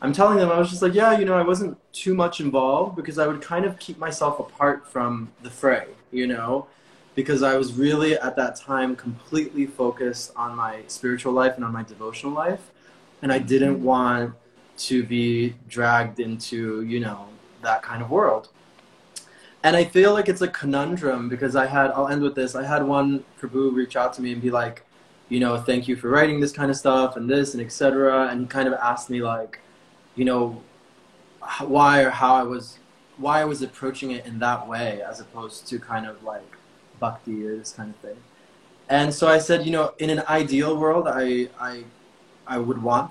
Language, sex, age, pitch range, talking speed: English, male, 20-39, 120-145 Hz, 205 wpm